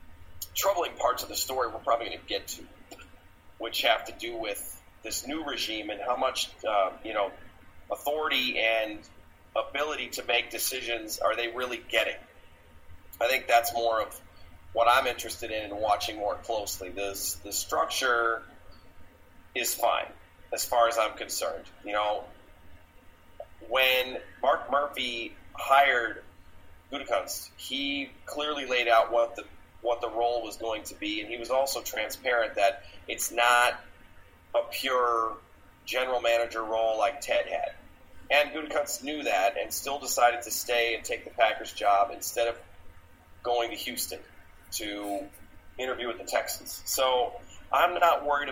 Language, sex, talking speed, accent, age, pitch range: English, male, 150 wpm, American, 30-49, 90-125 Hz